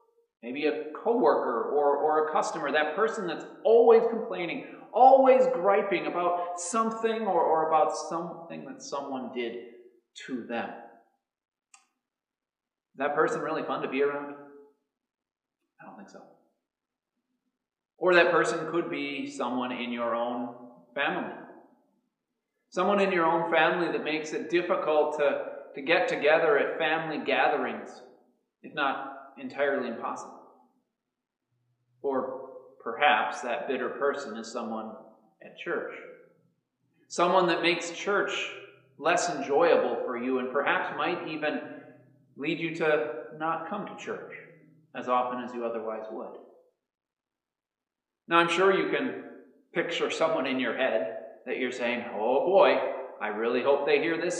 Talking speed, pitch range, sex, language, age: 135 wpm, 140-220 Hz, male, English, 30-49